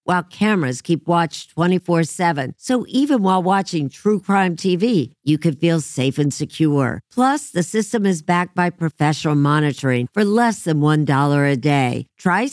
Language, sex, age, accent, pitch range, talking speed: English, female, 50-69, American, 145-195 Hz, 165 wpm